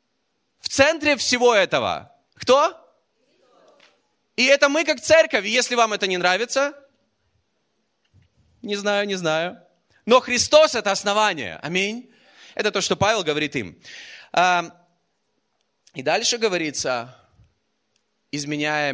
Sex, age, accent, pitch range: male, 20-39, native, 140-215 Hz